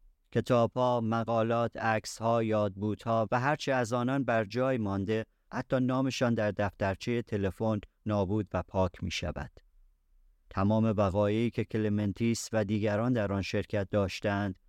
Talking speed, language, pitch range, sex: 140 wpm, Persian, 95-115 Hz, male